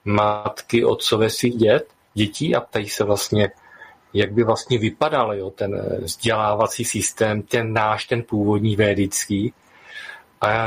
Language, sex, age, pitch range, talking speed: Czech, male, 40-59, 105-120 Hz, 135 wpm